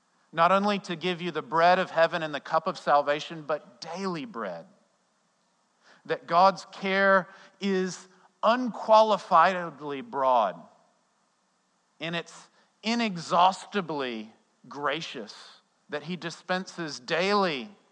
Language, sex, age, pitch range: English, male, 50-69, 140-190 Hz